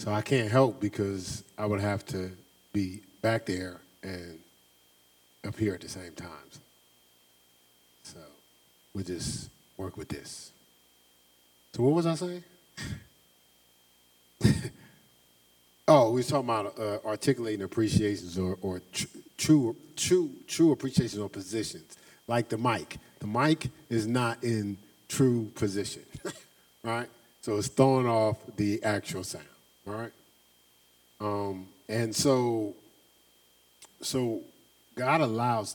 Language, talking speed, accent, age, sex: English, 120 wpm, American, 40-59, male